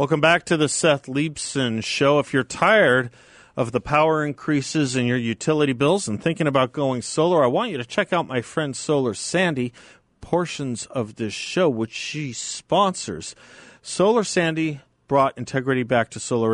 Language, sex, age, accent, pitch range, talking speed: English, male, 40-59, American, 110-145 Hz, 170 wpm